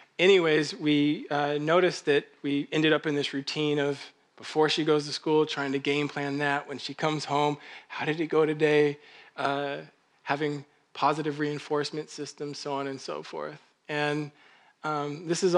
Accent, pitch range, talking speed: American, 145-155 Hz, 175 wpm